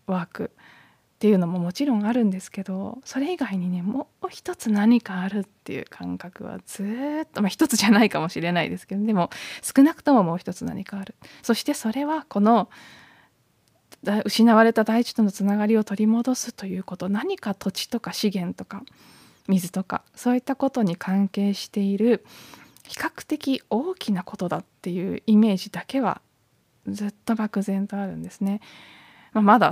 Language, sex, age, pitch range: Japanese, female, 20-39, 180-225 Hz